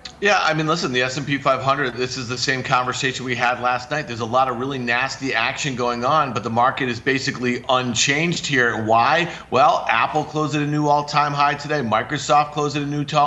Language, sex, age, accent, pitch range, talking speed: English, male, 40-59, American, 130-150 Hz, 215 wpm